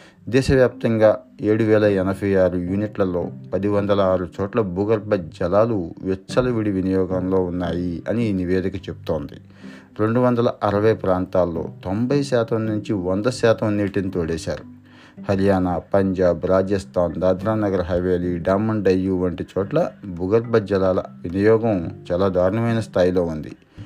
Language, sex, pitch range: Telugu, male, 90-110 Hz